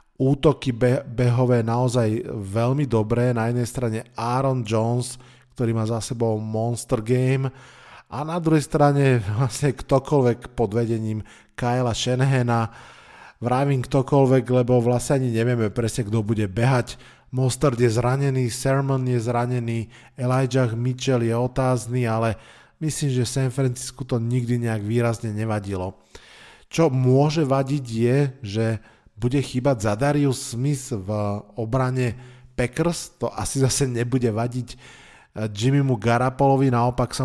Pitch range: 115-135 Hz